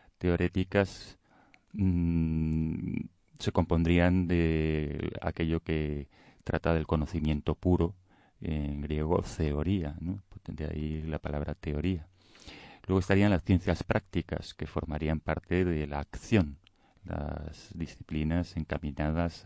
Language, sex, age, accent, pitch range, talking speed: Spanish, male, 40-59, Spanish, 75-95 Hz, 105 wpm